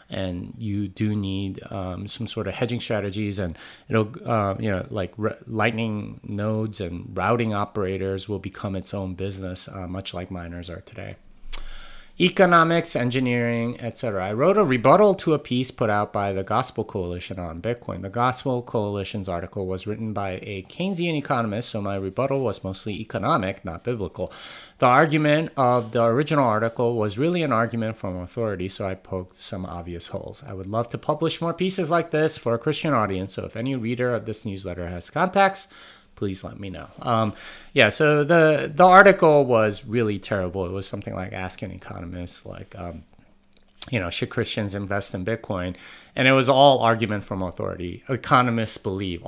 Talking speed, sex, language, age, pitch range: 180 wpm, male, English, 30-49, 95-125 Hz